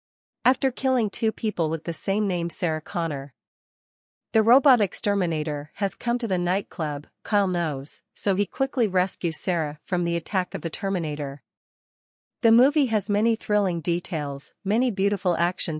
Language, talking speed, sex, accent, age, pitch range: English, 150 wpm, female, American, 40-59, 165-205 Hz